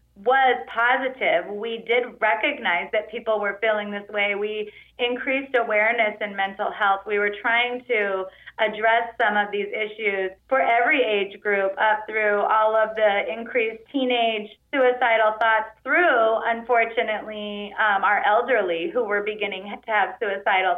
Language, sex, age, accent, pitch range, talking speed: English, female, 30-49, American, 195-235 Hz, 145 wpm